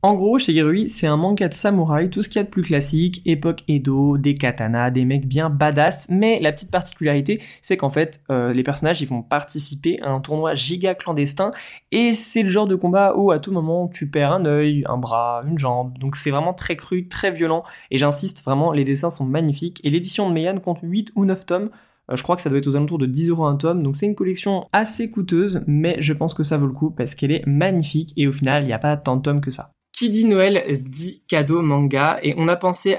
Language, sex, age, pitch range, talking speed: French, male, 20-39, 145-190 Hz, 250 wpm